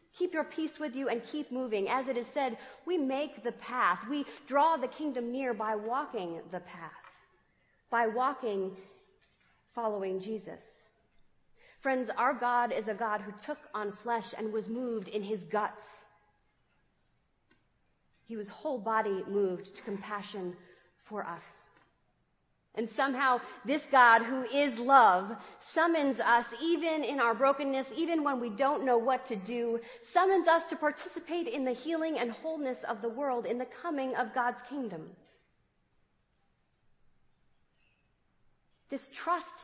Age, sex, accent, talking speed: 40-59, female, American, 145 wpm